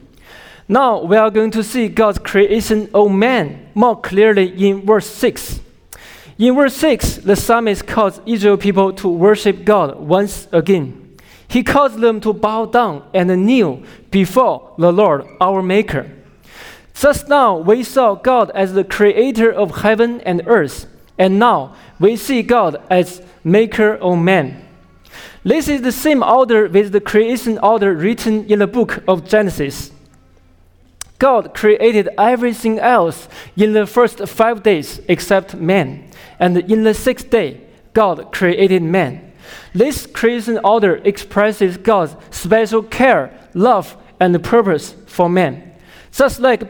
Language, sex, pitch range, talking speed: English, male, 180-230 Hz, 140 wpm